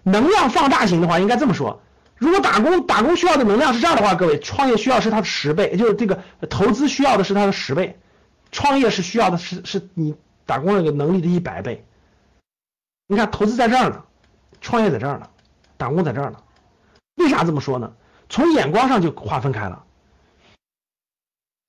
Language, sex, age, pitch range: Chinese, male, 50-69, 170-275 Hz